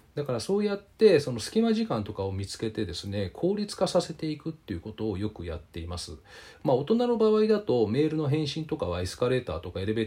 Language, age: Japanese, 40-59